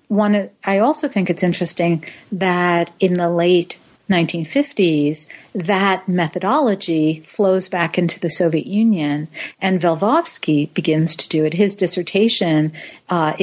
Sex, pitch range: female, 170-210 Hz